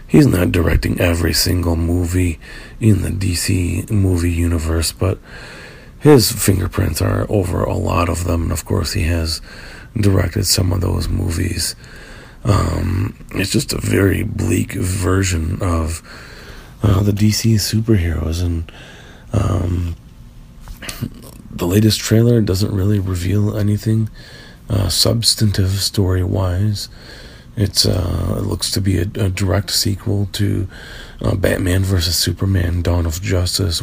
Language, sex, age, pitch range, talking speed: English, male, 40-59, 85-105 Hz, 130 wpm